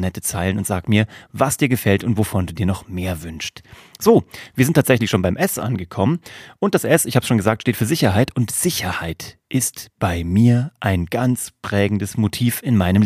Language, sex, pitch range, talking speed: German, male, 100-130 Hz, 200 wpm